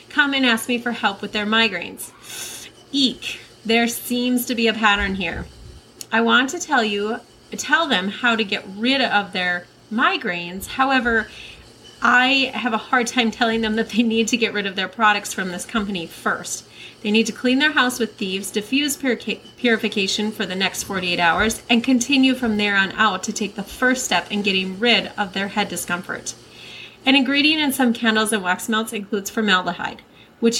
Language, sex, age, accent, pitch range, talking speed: English, female, 30-49, American, 205-250 Hz, 190 wpm